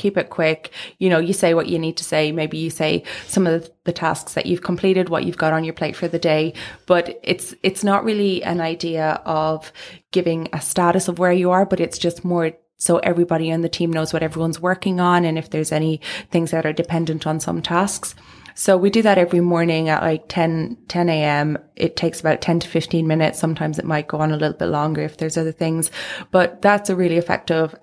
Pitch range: 160-180 Hz